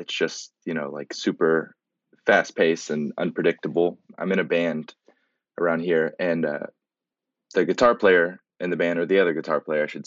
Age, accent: 20-39, American